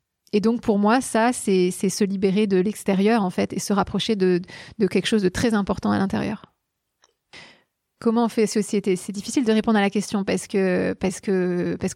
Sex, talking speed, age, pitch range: female, 185 wpm, 30-49, 195-225 Hz